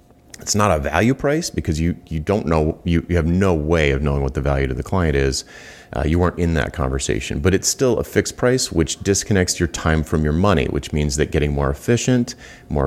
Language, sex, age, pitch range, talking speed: English, male, 30-49, 75-95 Hz, 235 wpm